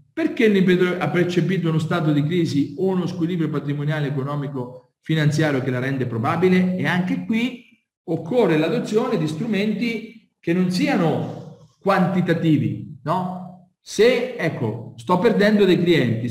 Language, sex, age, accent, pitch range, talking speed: Italian, male, 40-59, native, 145-195 Hz, 125 wpm